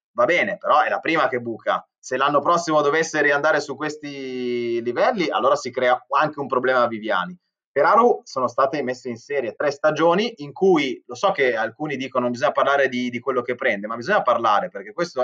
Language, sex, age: Italian, male, 20-39